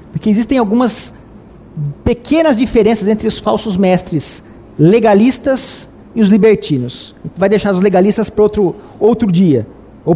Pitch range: 165-220 Hz